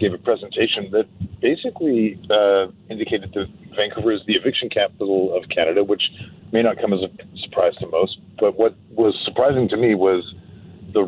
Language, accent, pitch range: English, American, 95-110 Hz